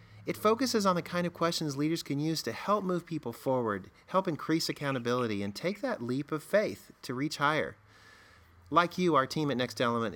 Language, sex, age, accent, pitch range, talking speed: English, male, 40-59, American, 115-165 Hz, 200 wpm